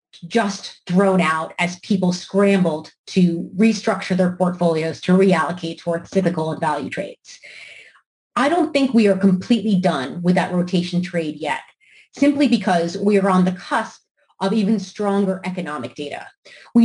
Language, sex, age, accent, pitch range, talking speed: English, female, 30-49, American, 170-200 Hz, 150 wpm